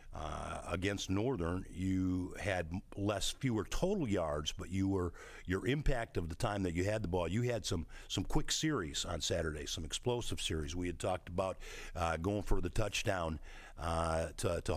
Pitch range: 85-110 Hz